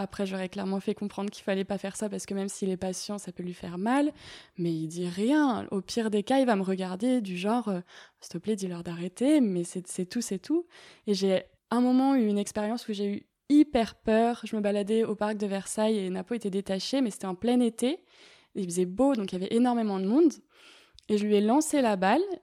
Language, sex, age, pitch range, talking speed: French, female, 20-39, 195-245 Hz, 250 wpm